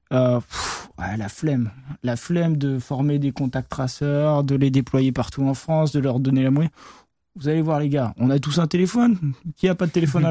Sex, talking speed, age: male, 220 wpm, 20-39